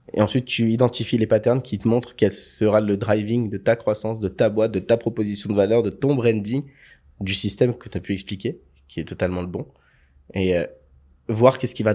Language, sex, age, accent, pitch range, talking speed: French, male, 20-39, French, 90-125 Hz, 225 wpm